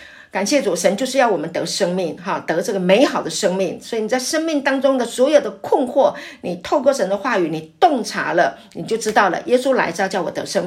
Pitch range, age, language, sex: 180-290 Hz, 50-69, Chinese, female